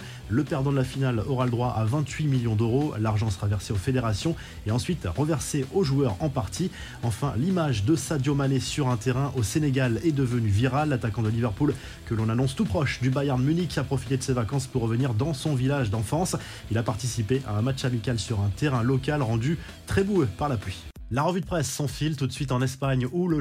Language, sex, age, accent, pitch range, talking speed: French, male, 20-39, French, 115-140 Hz, 230 wpm